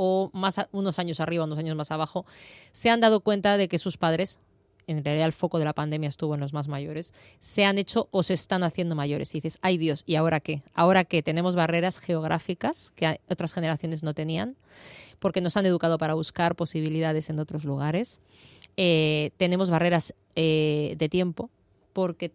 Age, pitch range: 20-39, 160-195 Hz